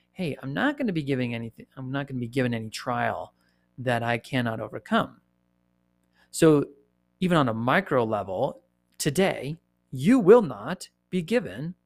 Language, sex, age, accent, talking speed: English, male, 30-49, American, 160 wpm